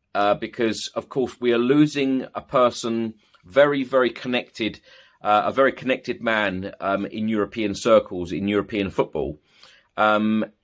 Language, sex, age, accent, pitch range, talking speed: English, male, 30-49, British, 100-120 Hz, 140 wpm